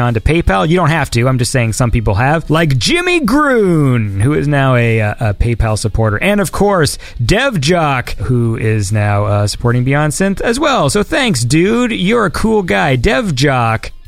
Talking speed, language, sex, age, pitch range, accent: 195 wpm, English, male, 30-49, 125-190 Hz, American